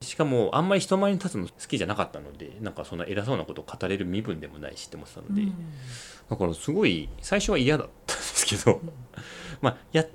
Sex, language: male, Japanese